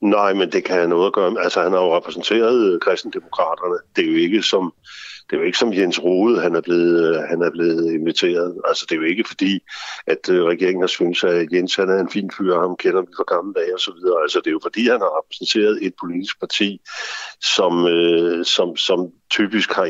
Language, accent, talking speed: Danish, native, 225 wpm